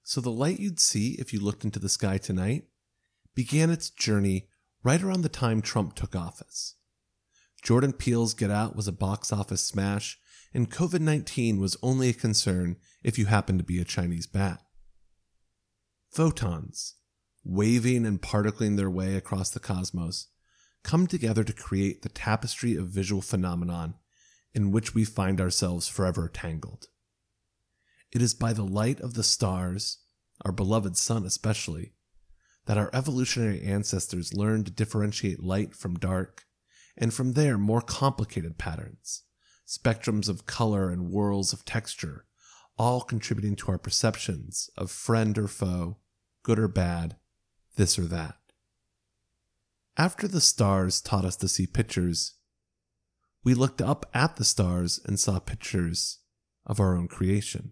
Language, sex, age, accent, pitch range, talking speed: English, male, 30-49, American, 95-115 Hz, 145 wpm